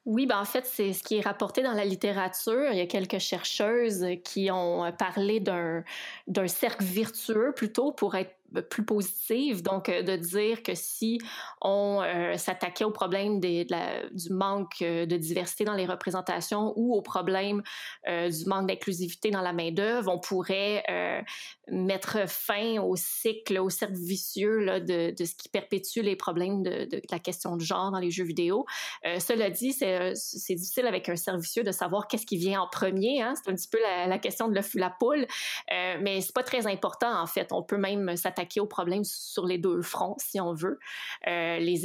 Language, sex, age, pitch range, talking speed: French, female, 20-39, 180-215 Hz, 195 wpm